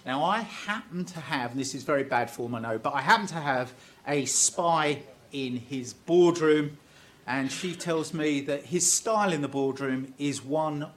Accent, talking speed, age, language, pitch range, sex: British, 190 wpm, 50-69, English, 140-190 Hz, male